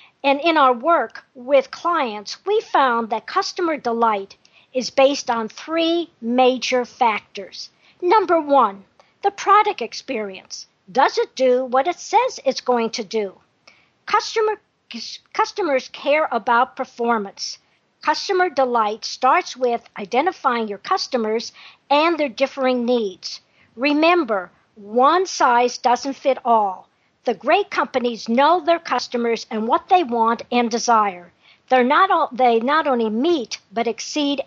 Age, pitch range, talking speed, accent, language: 50-69, 235-325 Hz, 130 wpm, American, English